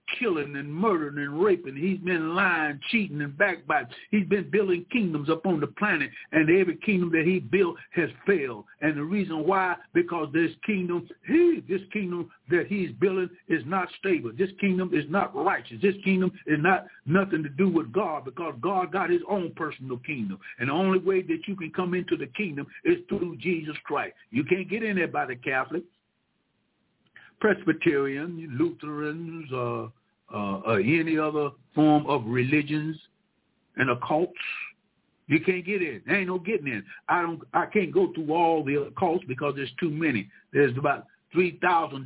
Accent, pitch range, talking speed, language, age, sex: American, 145-185 Hz, 175 wpm, English, 60-79, male